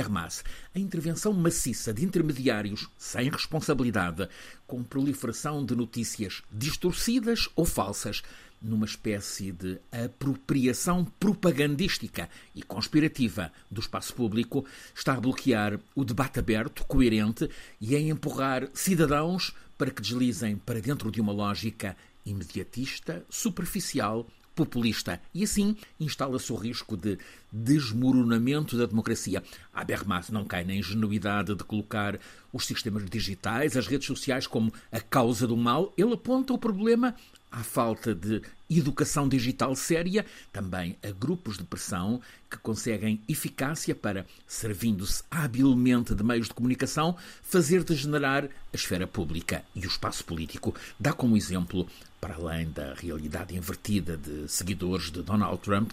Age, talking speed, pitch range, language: 50-69, 130 wpm, 100-140 Hz, Portuguese